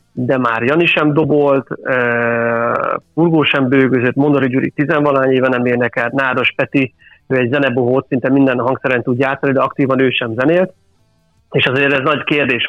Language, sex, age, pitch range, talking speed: Hungarian, male, 30-49, 125-140 Hz, 170 wpm